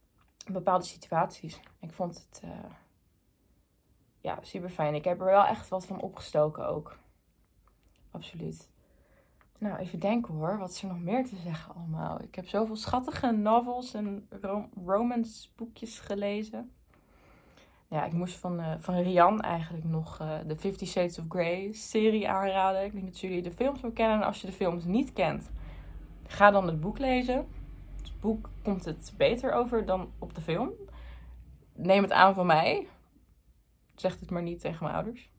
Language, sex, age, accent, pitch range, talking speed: Dutch, female, 20-39, Dutch, 170-210 Hz, 165 wpm